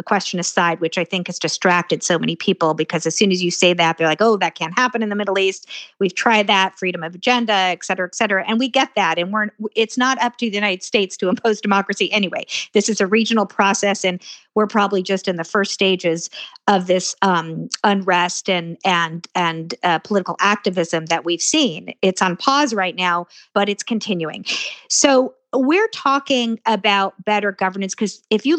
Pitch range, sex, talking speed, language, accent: 185-225 Hz, female, 205 wpm, English, American